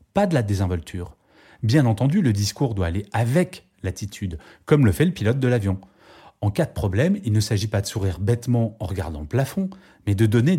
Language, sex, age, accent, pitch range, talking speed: French, male, 30-49, French, 95-125 Hz, 210 wpm